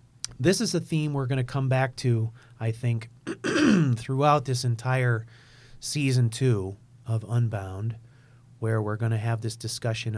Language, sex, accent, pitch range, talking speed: English, male, American, 115-125 Hz, 155 wpm